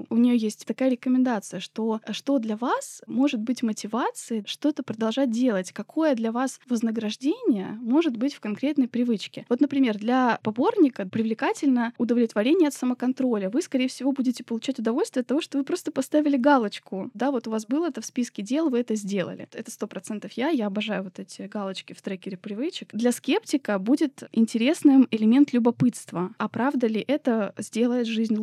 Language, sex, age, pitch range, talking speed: Russian, female, 20-39, 220-270 Hz, 170 wpm